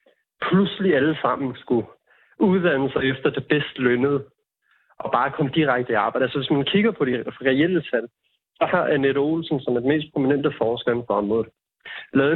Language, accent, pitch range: Danish, native, 120-150 Hz